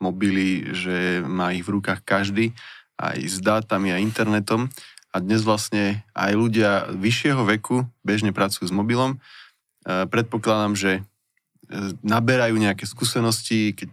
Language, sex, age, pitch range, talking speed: Slovak, male, 20-39, 100-115 Hz, 125 wpm